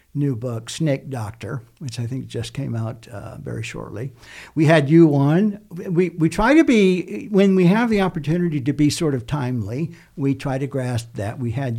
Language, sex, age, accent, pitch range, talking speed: English, male, 60-79, American, 130-160 Hz, 200 wpm